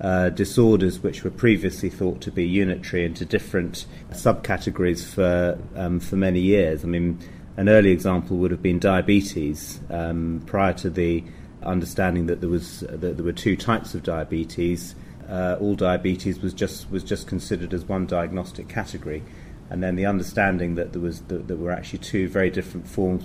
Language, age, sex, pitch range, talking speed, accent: English, 30-49, male, 85-95 Hz, 175 wpm, British